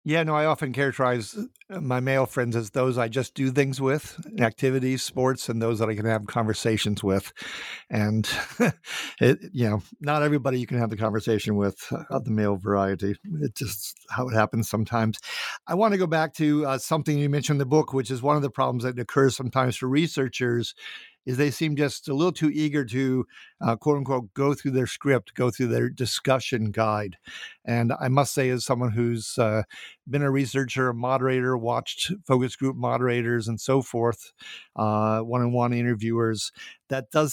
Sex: male